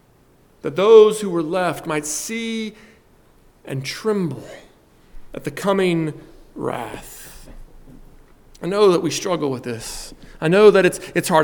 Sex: male